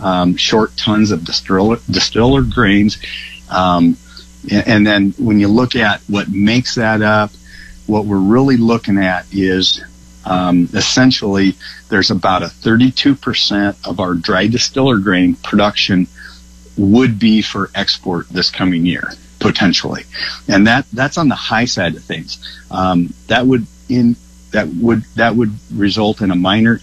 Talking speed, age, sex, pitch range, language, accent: 150 wpm, 50-69, male, 90-110 Hz, English, American